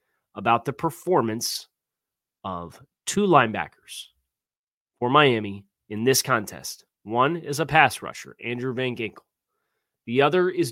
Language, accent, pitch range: English, American, 110-140 Hz